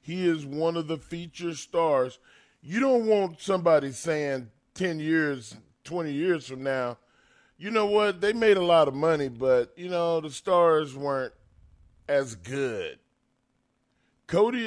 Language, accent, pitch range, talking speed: English, American, 125-175 Hz, 145 wpm